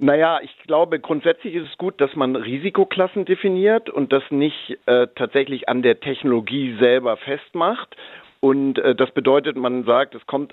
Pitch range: 125-150 Hz